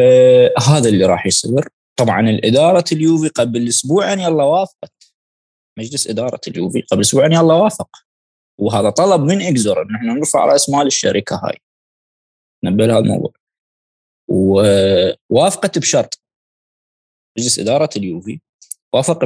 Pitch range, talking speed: 100-150 Hz, 120 wpm